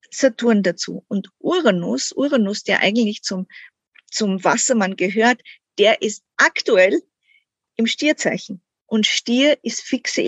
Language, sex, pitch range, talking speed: German, female, 200-250 Hz, 115 wpm